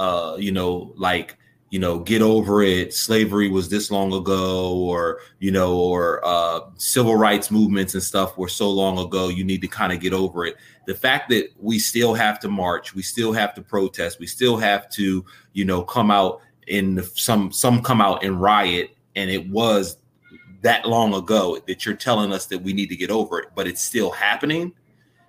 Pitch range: 95-115 Hz